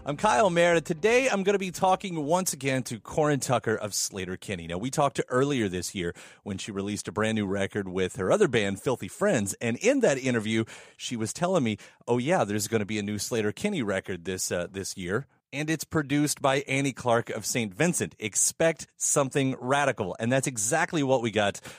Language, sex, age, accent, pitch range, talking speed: English, male, 30-49, American, 110-165 Hz, 210 wpm